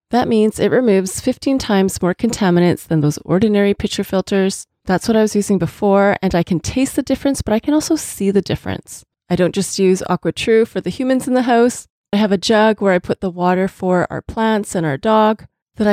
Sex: female